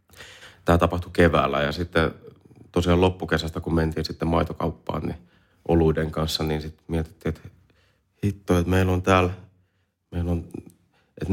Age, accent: 30-49, native